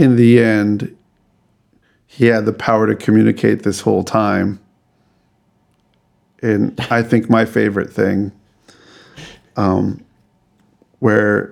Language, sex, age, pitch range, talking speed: English, male, 50-69, 110-125 Hz, 105 wpm